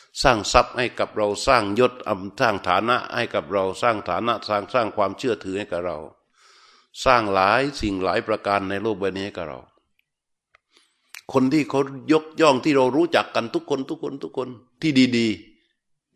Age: 60-79